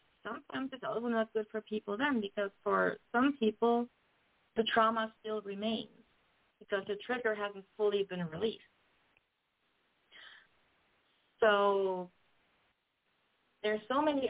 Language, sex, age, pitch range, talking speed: English, female, 30-49, 190-225 Hz, 120 wpm